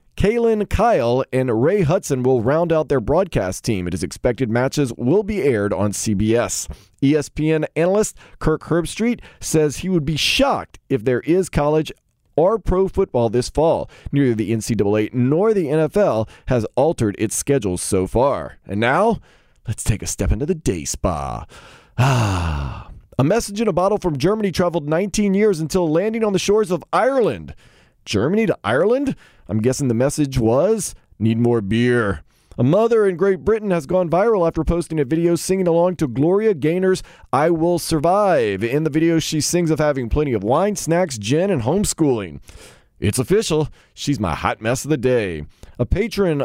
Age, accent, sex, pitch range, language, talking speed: 30-49, American, male, 115-180 Hz, English, 175 wpm